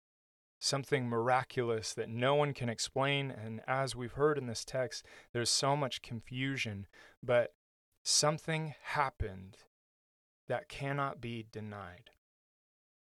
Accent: American